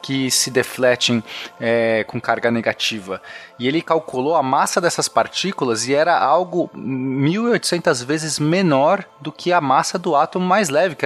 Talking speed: 155 wpm